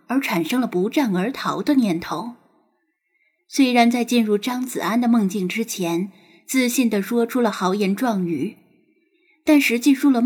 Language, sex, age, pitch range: Chinese, female, 10-29, 190-265 Hz